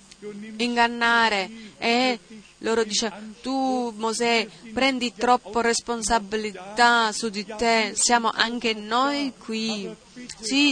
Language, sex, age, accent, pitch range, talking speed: Italian, female, 30-49, native, 215-240 Hz, 95 wpm